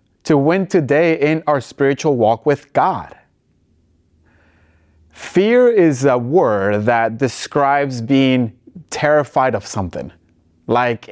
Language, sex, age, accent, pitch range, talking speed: English, male, 30-49, American, 110-155 Hz, 110 wpm